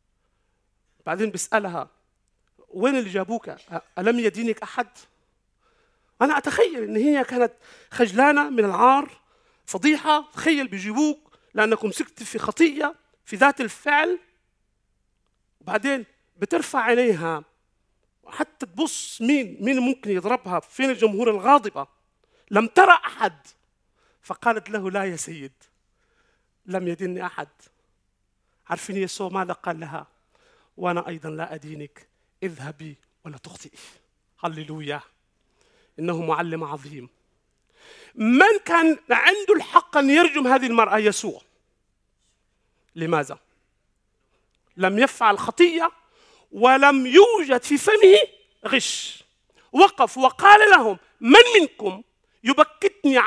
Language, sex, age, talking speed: Arabic, male, 40-59, 100 wpm